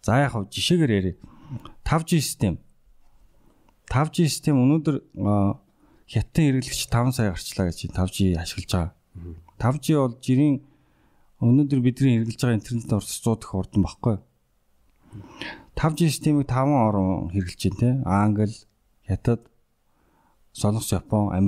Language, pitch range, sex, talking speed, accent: English, 95-125 Hz, male, 80 wpm, Korean